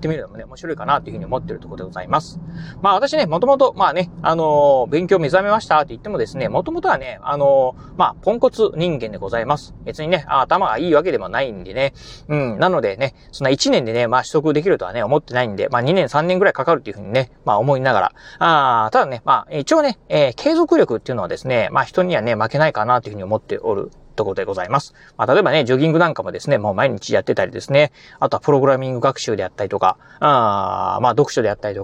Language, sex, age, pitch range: Japanese, male, 30-49, 125-180 Hz